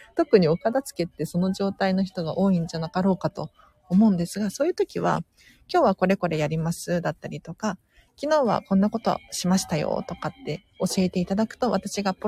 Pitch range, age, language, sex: 175-215 Hz, 40-59, Japanese, female